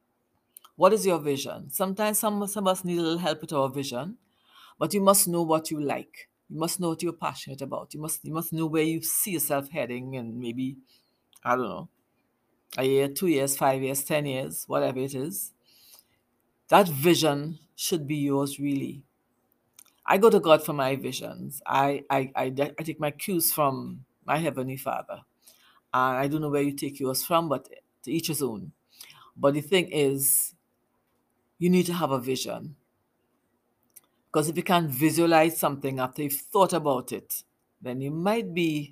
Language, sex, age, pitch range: English, female, 60-79, 140-170 Hz